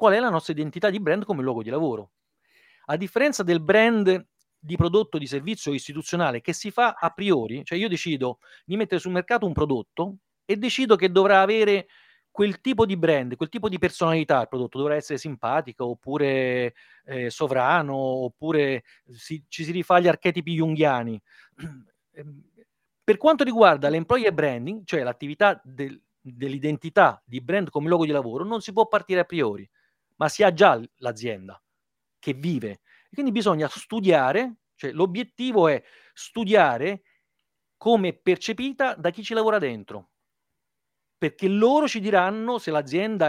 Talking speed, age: 155 wpm, 40-59